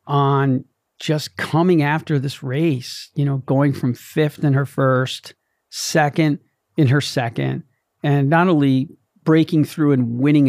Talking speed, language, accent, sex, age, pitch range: 145 wpm, English, American, male, 40-59, 130-150 Hz